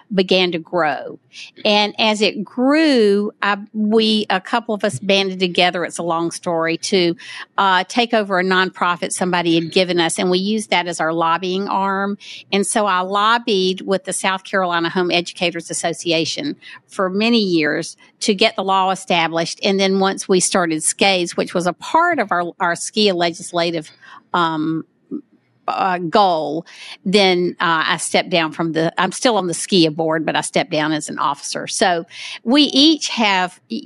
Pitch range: 175-215 Hz